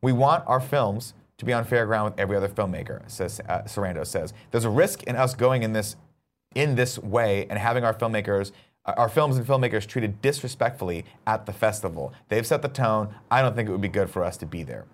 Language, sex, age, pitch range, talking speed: English, male, 30-49, 100-125 Hz, 230 wpm